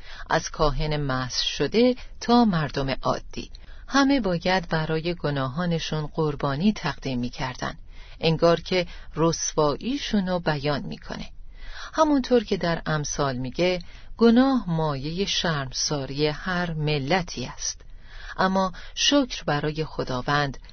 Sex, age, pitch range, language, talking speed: female, 40-59, 145-185 Hz, Persian, 100 wpm